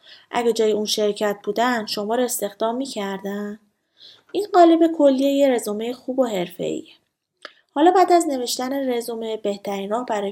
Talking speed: 140 wpm